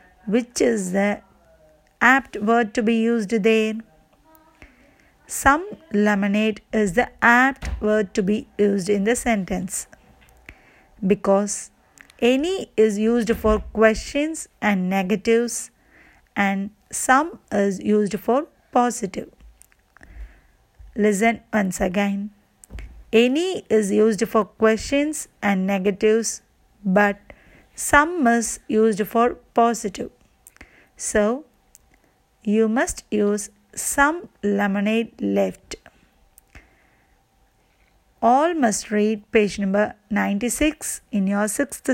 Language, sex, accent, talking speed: Tamil, female, native, 95 wpm